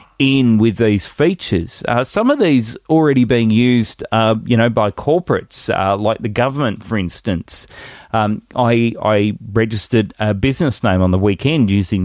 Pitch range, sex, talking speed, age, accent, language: 100-120 Hz, male, 165 wpm, 30-49, Australian, English